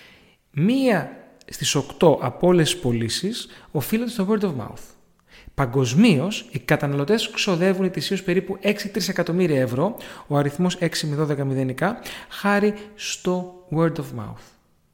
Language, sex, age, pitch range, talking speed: Greek, male, 30-49, 145-195 Hz, 115 wpm